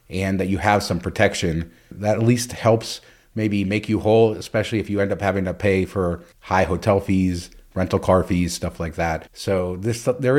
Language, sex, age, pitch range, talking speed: English, male, 30-49, 90-110 Hz, 200 wpm